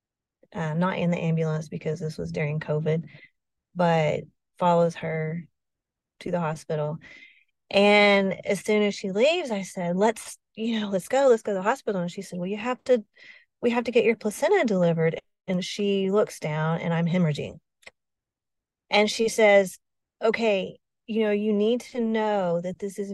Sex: female